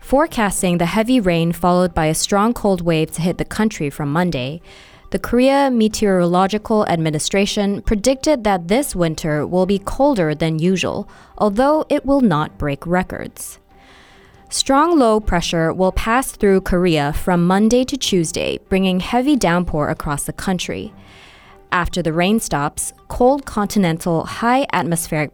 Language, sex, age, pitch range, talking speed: English, female, 20-39, 160-220 Hz, 140 wpm